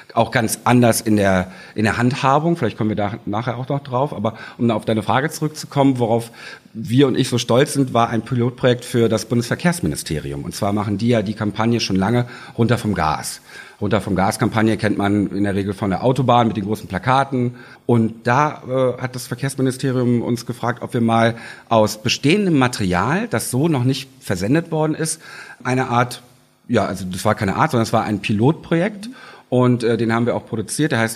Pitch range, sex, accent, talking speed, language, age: 105-130 Hz, male, German, 200 wpm, German, 50-69